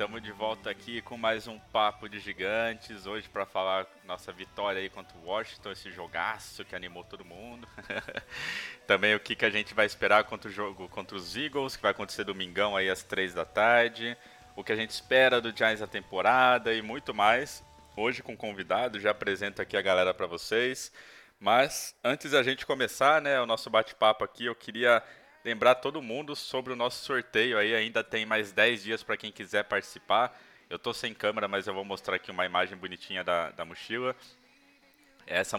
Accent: Brazilian